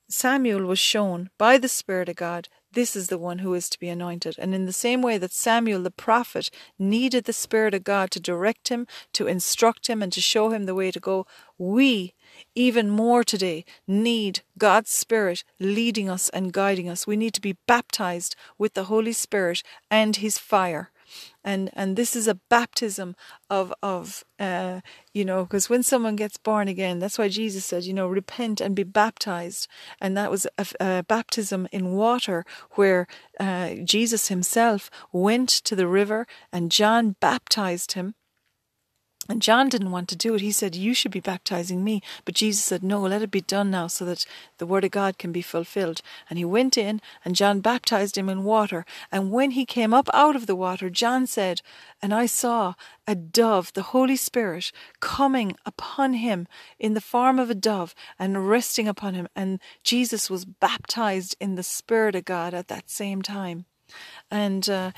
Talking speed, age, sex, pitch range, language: 190 wpm, 40-59, female, 185-225 Hz, English